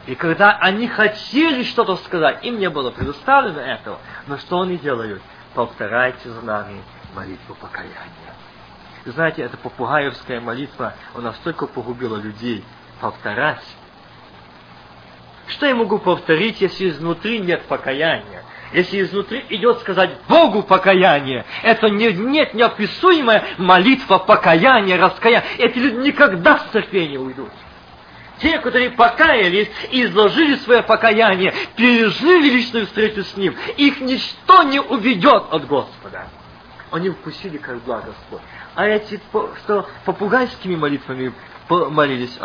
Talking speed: 120 wpm